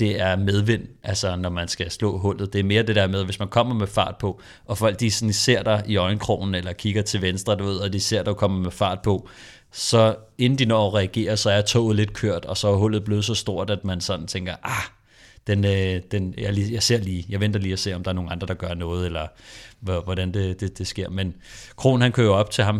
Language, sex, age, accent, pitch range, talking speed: Danish, male, 30-49, native, 95-110 Hz, 260 wpm